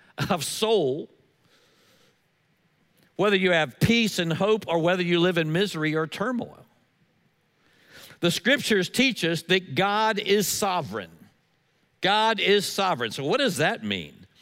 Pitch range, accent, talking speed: 155-205 Hz, American, 135 wpm